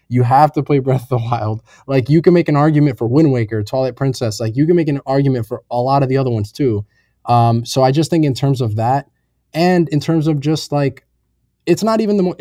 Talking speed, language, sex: 255 wpm, English, male